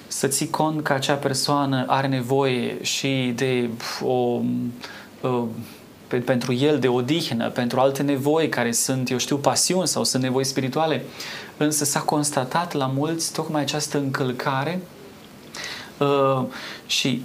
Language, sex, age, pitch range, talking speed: Romanian, male, 20-39, 125-155 Hz, 135 wpm